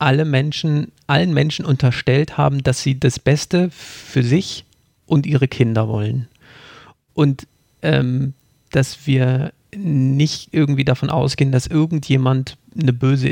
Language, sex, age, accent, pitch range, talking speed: German, male, 40-59, German, 130-155 Hz, 115 wpm